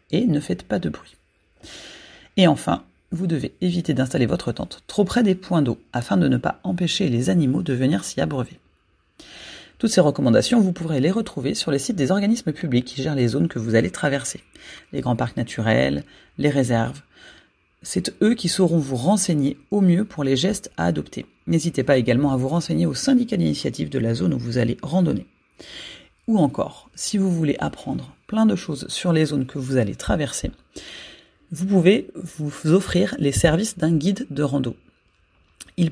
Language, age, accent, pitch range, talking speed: French, 40-59, French, 130-180 Hz, 190 wpm